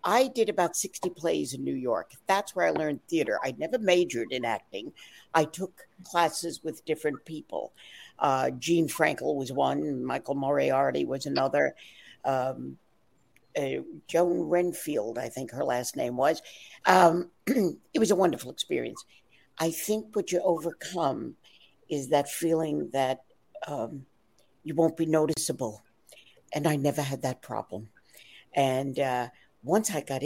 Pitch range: 150-200 Hz